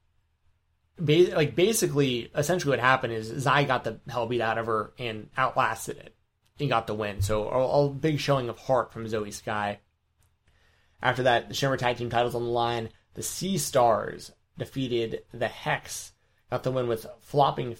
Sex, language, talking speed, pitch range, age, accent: male, English, 170 wpm, 110-130 Hz, 20-39, American